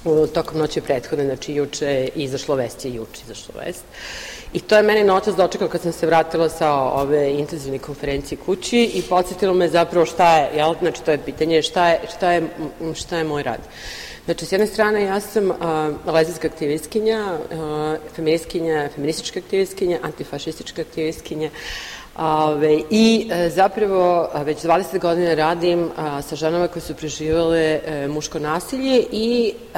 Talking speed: 155 wpm